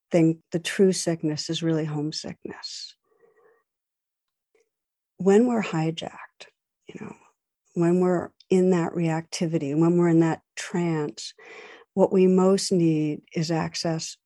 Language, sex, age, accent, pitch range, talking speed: English, female, 60-79, American, 160-185 Hz, 115 wpm